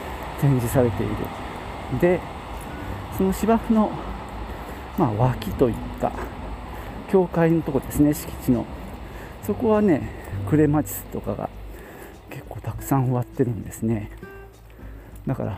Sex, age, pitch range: male, 40-59, 100-140 Hz